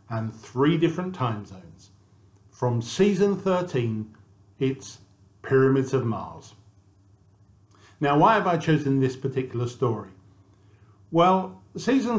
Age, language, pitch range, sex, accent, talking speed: 50-69, English, 105-160 Hz, male, British, 110 wpm